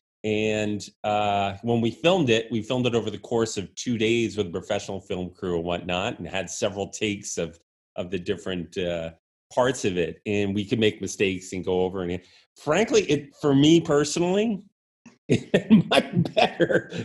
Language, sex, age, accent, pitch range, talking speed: English, male, 30-49, American, 100-125 Hz, 185 wpm